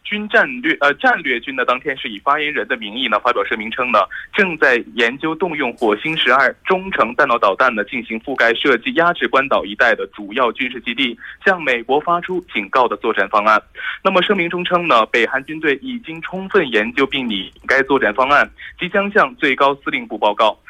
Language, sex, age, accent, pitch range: Korean, male, 20-39, Chinese, 155-210 Hz